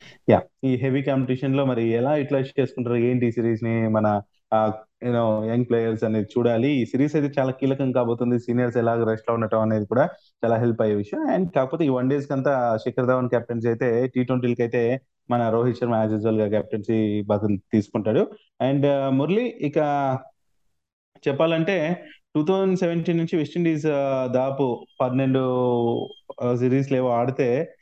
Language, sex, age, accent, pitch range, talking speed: Telugu, male, 20-39, native, 115-140 Hz, 155 wpm